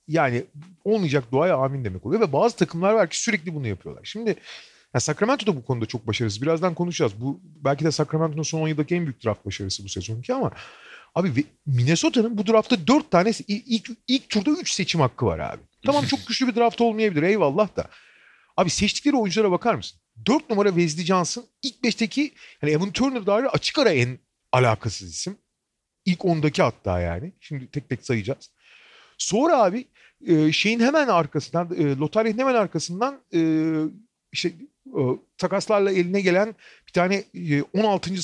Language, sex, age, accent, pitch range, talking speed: Turkish, male, 40-59, native, 135-220 Hz, 160 wpm